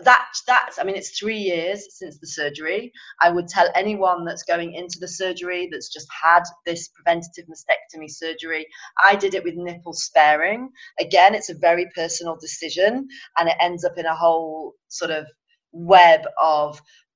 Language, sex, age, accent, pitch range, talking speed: English, female, 30-49, British, 160-195 Hz, 170 wpm